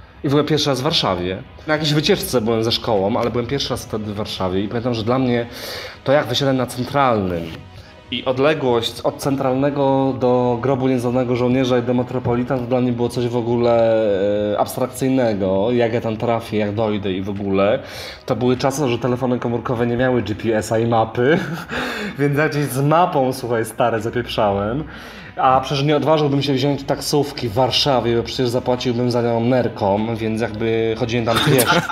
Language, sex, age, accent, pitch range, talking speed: Polish, male, 30-49, native, 115-135 Hz, 185 wpm